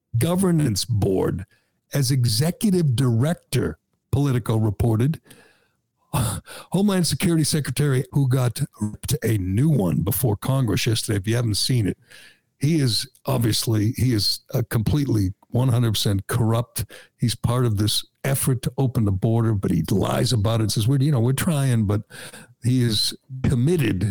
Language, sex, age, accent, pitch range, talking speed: English, male, 60-79, American, 115-145 Hz, 140 wpm